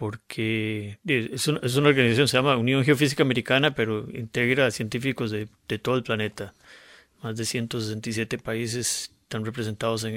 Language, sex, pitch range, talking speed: English, male, 115-140 Hz, 160 wpm